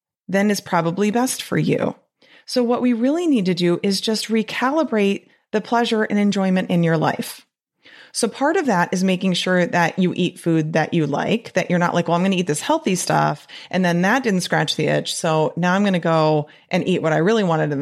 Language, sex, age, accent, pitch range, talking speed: English, female, 30-49, American, 165-220 Hz, 225 wpm